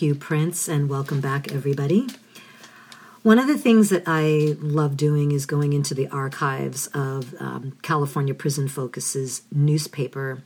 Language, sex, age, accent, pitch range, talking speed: English, female, 50-69, American, 140-165 Hz, 145 wpm